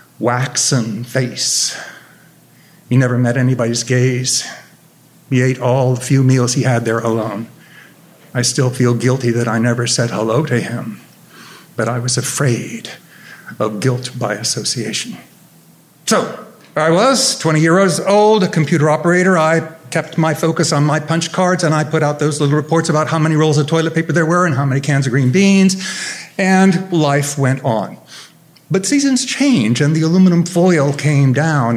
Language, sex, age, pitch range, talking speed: English, male, 50-69, 125-165 Hz, 170 wpm